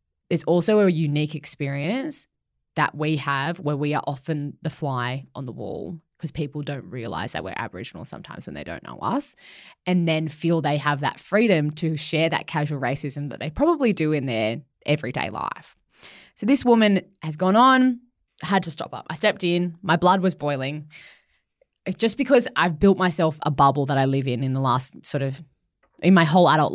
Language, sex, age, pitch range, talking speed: English, female, 20-39, 145-185 Hz, 195 wpm